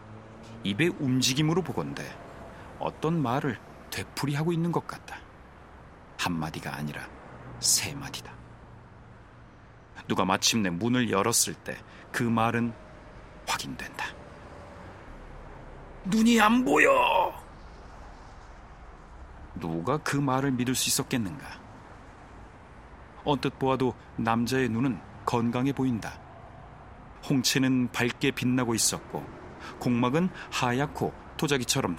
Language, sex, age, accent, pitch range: Korean, male, 40-59, native, 95-135 Hz